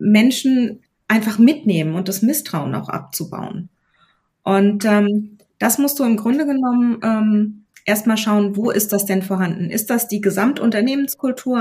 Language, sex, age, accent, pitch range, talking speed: German, female, 30-49, German, 190-220 Hz, 145 wpm